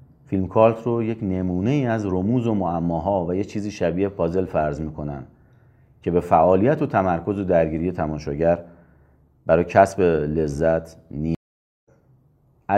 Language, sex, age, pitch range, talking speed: Persian, male, 40-59, 85-115 Hz, 140 wpm